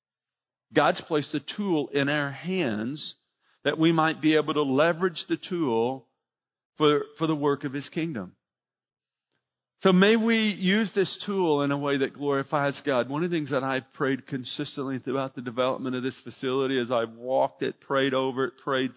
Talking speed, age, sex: 180 wpm, 50-69, male